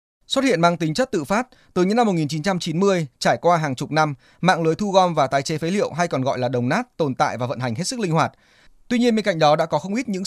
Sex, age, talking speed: male, 20-39, 290 wpm